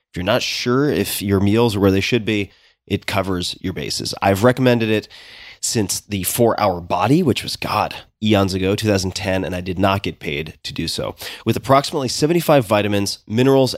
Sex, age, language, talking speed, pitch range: male, 30-49, English, 185 wpm, 95-115 Hz